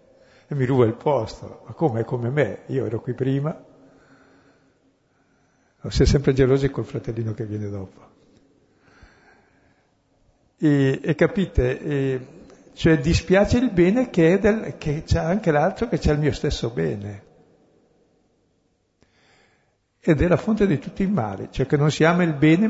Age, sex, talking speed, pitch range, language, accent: 60-79, male, 155 wpm, 110-150 Hz, Italian, native